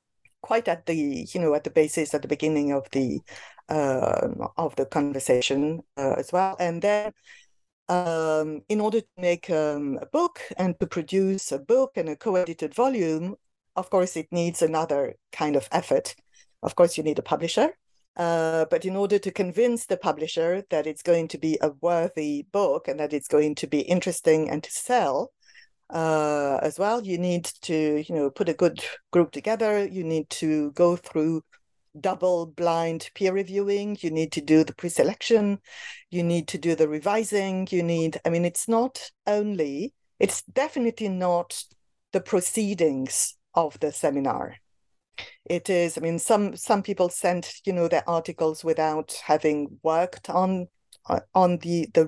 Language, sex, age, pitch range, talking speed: English, female, 50-69, 155-195 Hz, 170 wpm